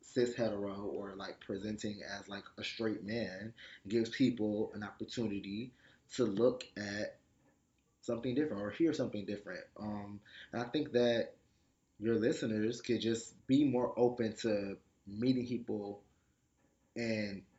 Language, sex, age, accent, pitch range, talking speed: English, male, 20-39, American, 100-125 Hz, 130 wpm